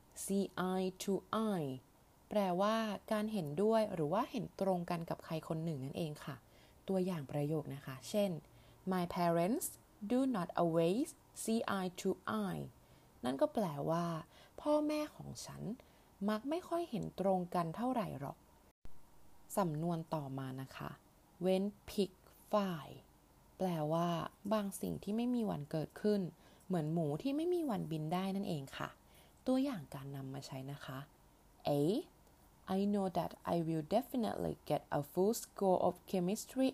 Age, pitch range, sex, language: 20-39, 155-215 Hz, female, Thai